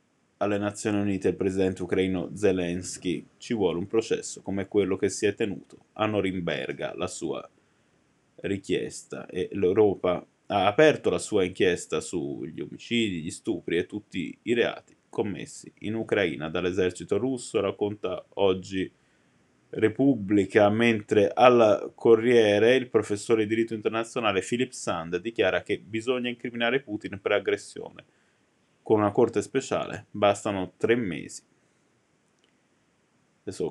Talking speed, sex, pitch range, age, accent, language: 125 wpm, male, 100-120 Hz, 20-39, native, Italian